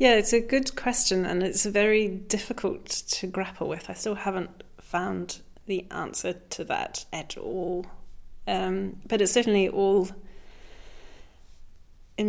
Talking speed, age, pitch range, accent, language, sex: 135 wpm, 30-49, 180-215 Hz, British, English, female